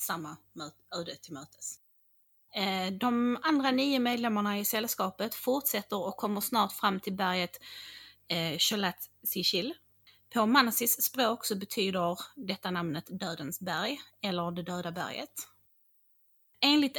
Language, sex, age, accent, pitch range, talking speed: English, female, 30-49, Swedish, 175-225 Hz, 115 wpm